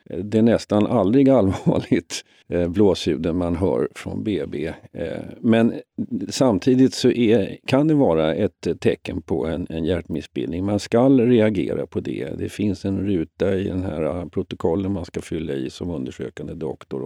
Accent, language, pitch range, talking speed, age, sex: native, Swedish, 90-105 Hz, 160 wpm, 50-69, male